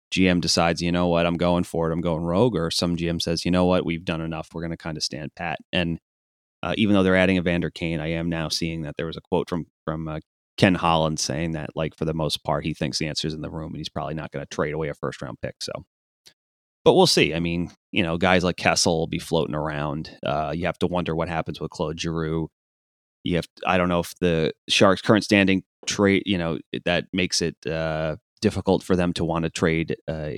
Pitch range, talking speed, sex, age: 80-90 Hz, 255 wpm, male, 30-49